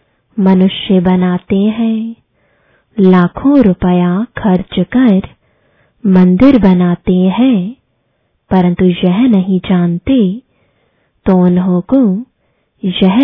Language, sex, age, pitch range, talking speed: English, female, 20-39, 180-225 Hz, 80 wpm